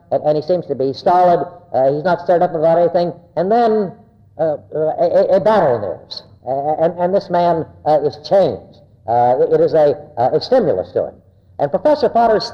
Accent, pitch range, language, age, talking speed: American, 130-210 Hz, English, 60-79, 205 wpm